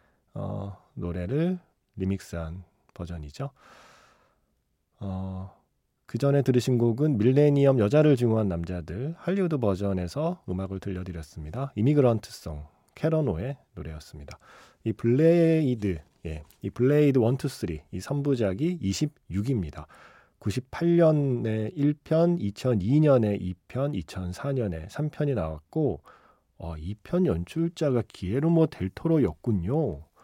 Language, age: Korean, 40-59